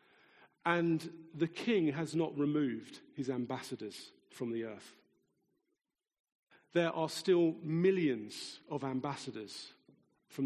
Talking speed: 105 wpm